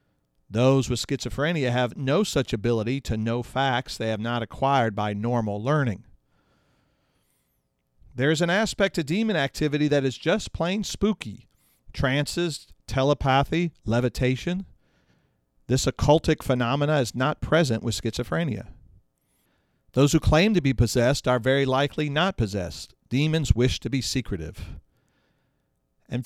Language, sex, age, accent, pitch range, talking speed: English, male, 40-59, American, 110-145 Hz, 130 wpm